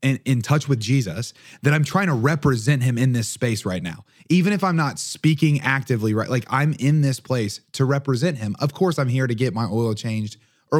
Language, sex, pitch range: English, male, 110-140 Hz